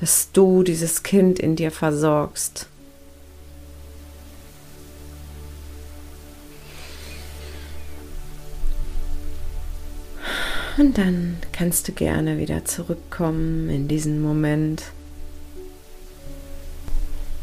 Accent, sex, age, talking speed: German, female, 30-49, 60 wpm